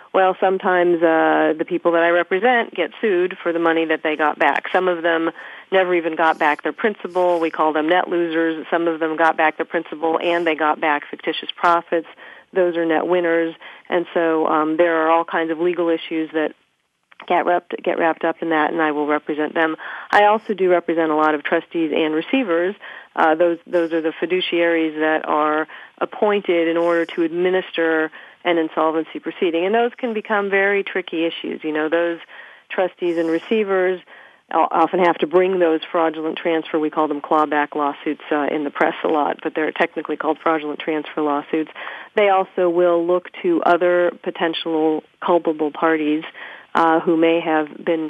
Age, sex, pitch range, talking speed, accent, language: 40-59, female, 160-175 Hz, 185 wpm, American, English